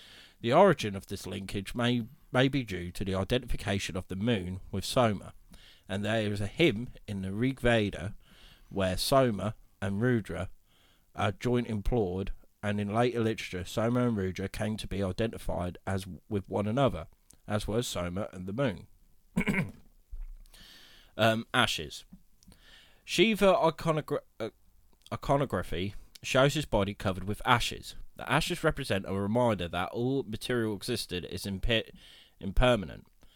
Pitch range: 95-120 Hz